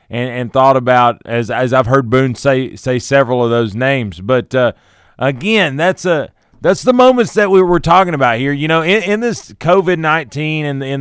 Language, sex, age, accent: English, male, 30-49, American